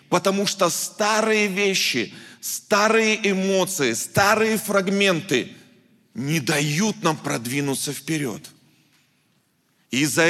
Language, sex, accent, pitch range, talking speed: Russian, male, native, 170-215 Hz, 85 wpm